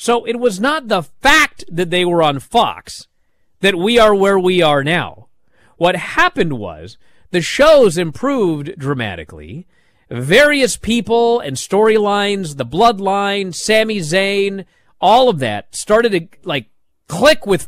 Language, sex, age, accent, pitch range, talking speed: English, male, 40-59, American, 145-230 Hz, 140 wpm